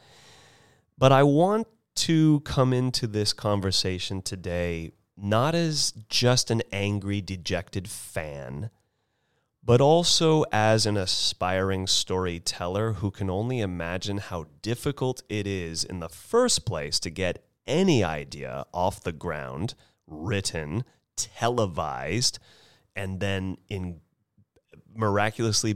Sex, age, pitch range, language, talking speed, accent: male, 30-49, 95-120 Hz, English, 110 wpm, American